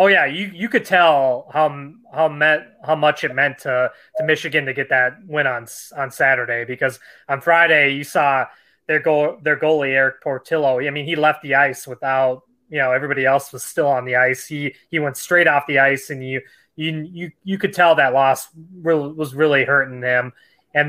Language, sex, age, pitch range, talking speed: English, male, 20-39, 130-155 Hz, 210 wpm